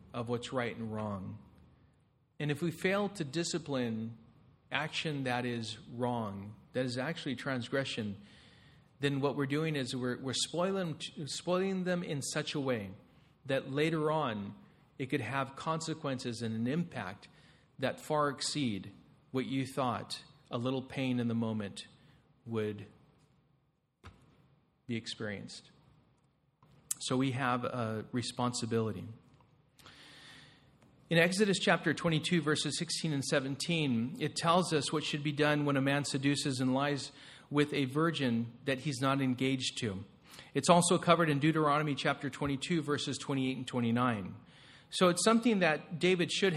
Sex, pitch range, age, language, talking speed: male, 125-155 Hz, 40-59, English, 140 wpm